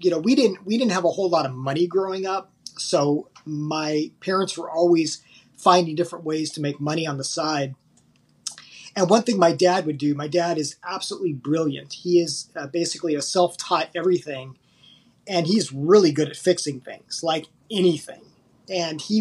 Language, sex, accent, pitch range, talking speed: English, male, American, 150-190 Hz, 180 wpm